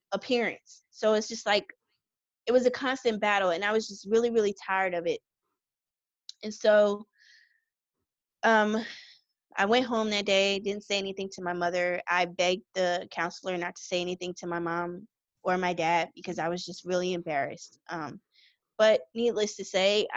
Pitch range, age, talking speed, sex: 175-210 Hz, 20-39, 175 wpm, female